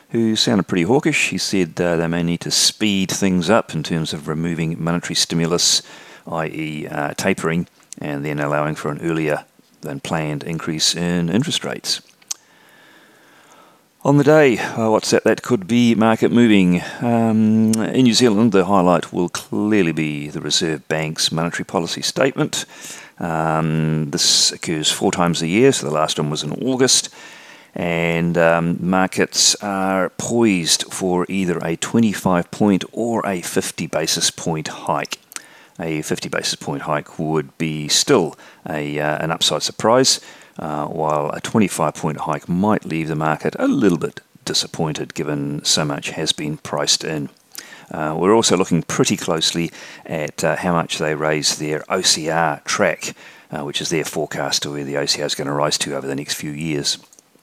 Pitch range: 80-100 Hz